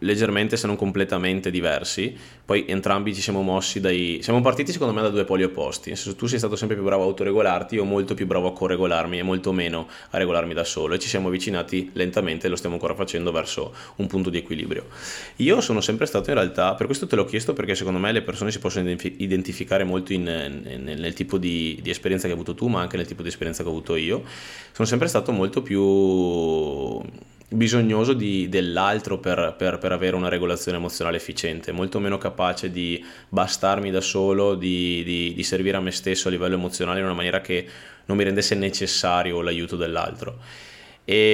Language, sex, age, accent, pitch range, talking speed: Italian, male, 20-39, native, 85-100 Hz, 210 wpm